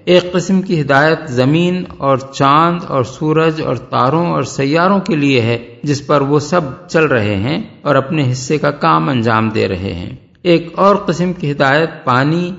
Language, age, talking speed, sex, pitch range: Urdu, 50-69, 180 wpm, male, 135-170 Hz